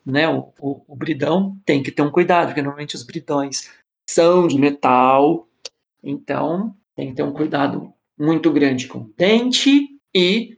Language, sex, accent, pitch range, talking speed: Portuguese, male, Brazilian, 145-185 Hz, 160 wpm